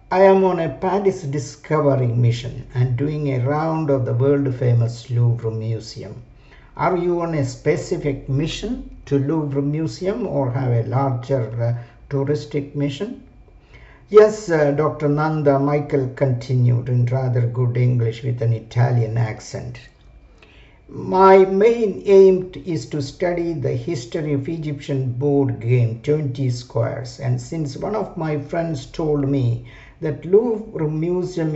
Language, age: English, 60-79